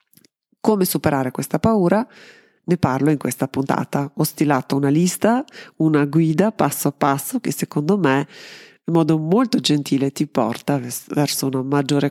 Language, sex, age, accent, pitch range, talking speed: Italian, female, 40-59, native, 140-180 Hz, 155 wpm